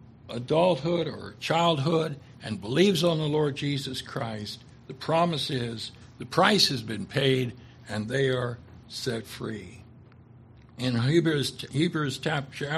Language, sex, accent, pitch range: English, male, American, 120-155 Hz